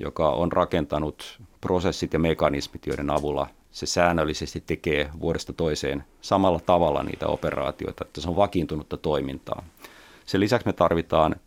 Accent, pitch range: native, 75-90 Hz